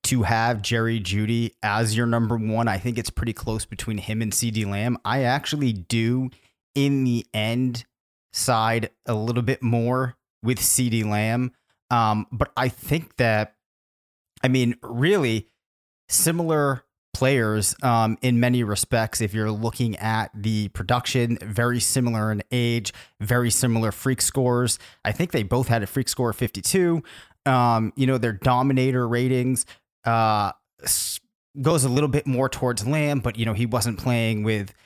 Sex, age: male, 30-49